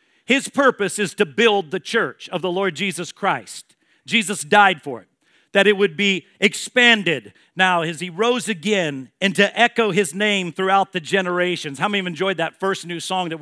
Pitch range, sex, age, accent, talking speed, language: 175-215 Hz, male, 50-69, American, 195 wpm, English